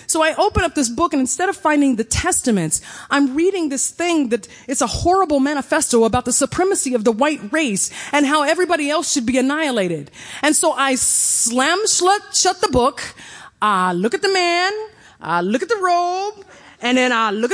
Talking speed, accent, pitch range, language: 190 wpm, American, 275-390 Hz, English